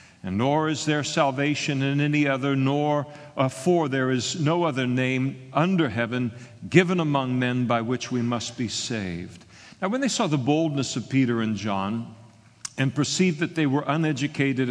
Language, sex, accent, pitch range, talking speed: English, male, American, 120-155 Hz, 170 wpm